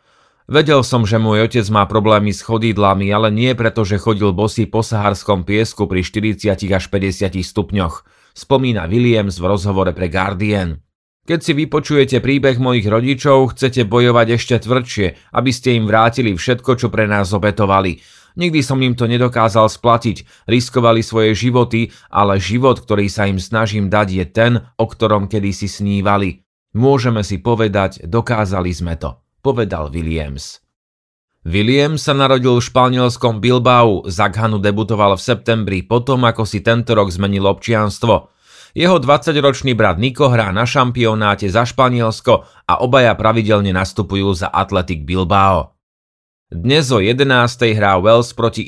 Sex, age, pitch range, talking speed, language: male, 30-49, 100-120 Hz, 145 wpm, Slovak